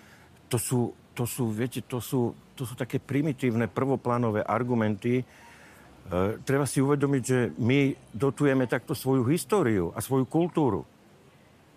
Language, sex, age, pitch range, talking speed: Slovak, male, 50-69, 110-145 Hz, 135 wpm